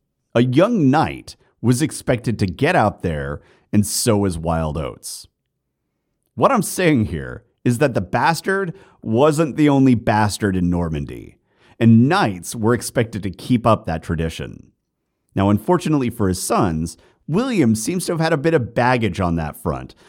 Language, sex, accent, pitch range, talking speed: English, male, American, 95-130 Hz, 160 wpm